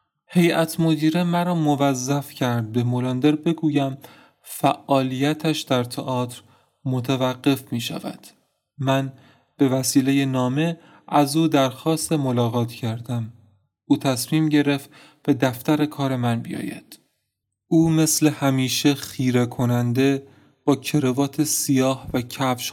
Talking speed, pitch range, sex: 110 wpm, 125-150 Hz, male